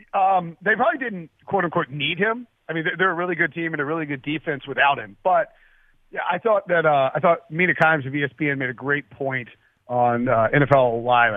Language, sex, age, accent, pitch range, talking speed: English, male, 40-59, American, 140-175 Hz, 220 wpm